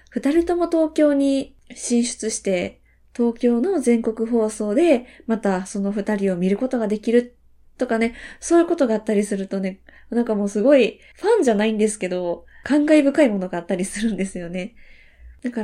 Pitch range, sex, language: 200-260 Hz, female, Japanese